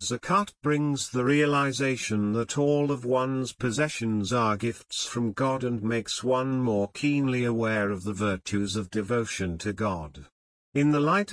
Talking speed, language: 155 wpm, Urdu